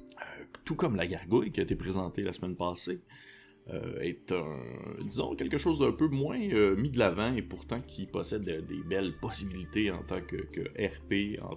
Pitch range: 85-105 Hz